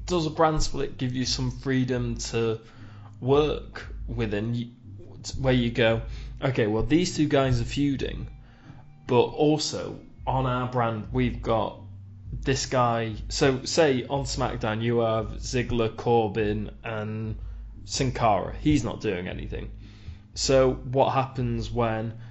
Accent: British